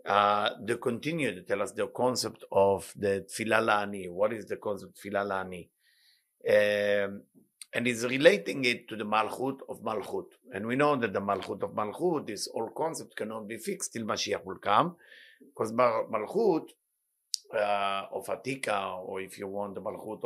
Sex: male